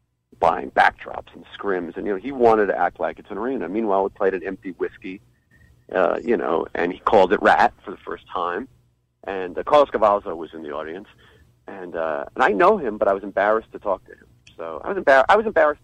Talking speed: 235 wpm